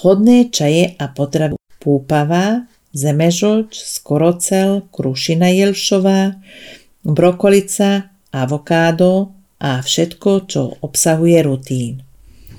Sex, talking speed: female, 75 wpm